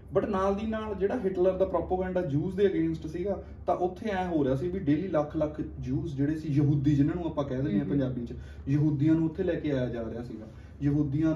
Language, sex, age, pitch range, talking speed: Punjabi, male, 20-39, 130-185 Hz, 230 wpm